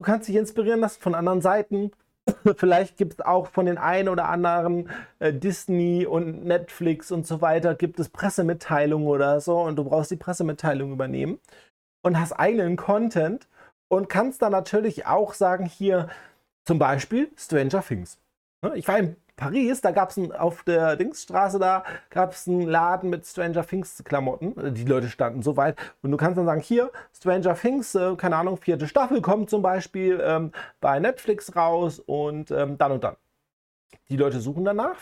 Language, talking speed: German, 175 wpm